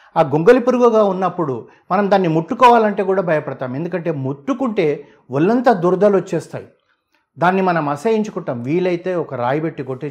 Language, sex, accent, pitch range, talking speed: Telugu, male, native, 140-205 Hz, 125 wpm